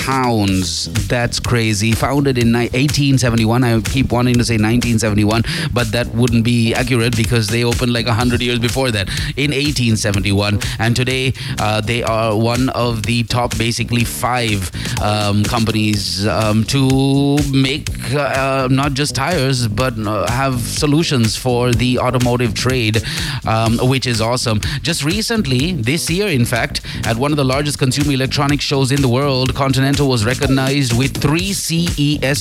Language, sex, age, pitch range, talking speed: English, male, 30-49, 115-135 Hz, 150 wpm